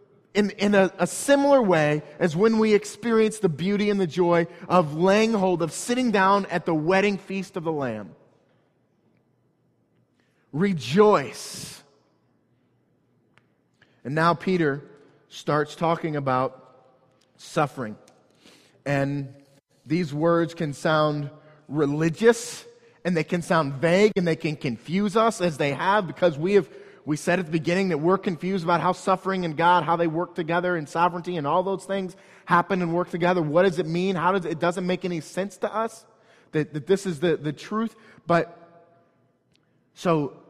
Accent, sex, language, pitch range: American, male, English, 155-195 Hz